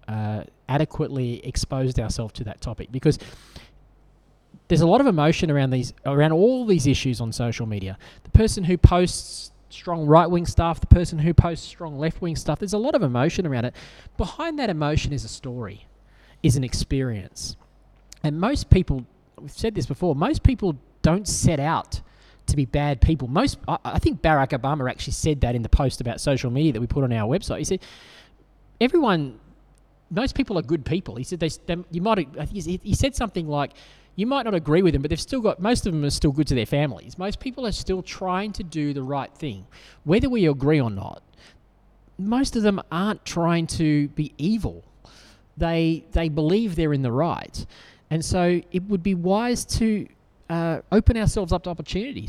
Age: 20-39